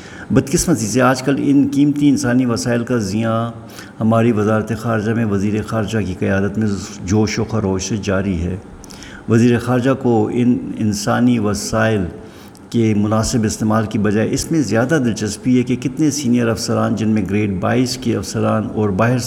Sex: male